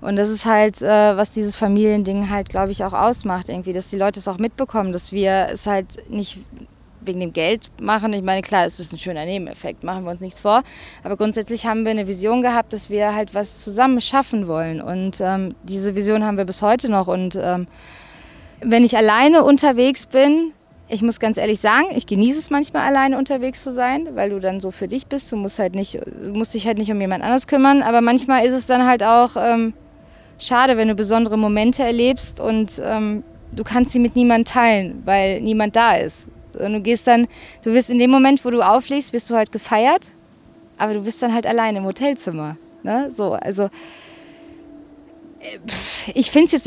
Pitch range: 200-245 Hz